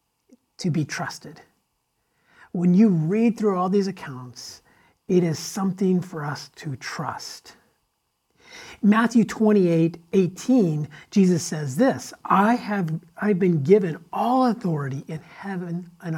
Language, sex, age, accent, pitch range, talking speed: English, male, 50-69, American, 160-215 Hz, 115 wpm